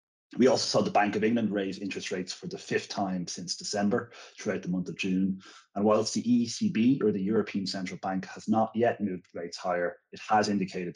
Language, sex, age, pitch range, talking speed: English, male, 30-49, 95-110 Hz, 215 wpm